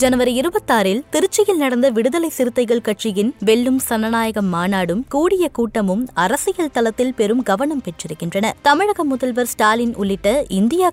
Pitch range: 200-265 Hz